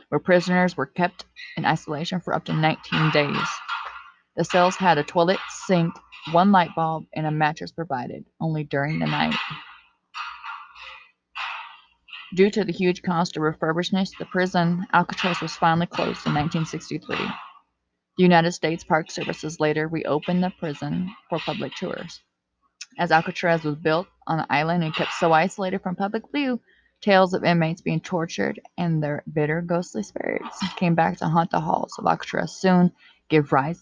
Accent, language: American, English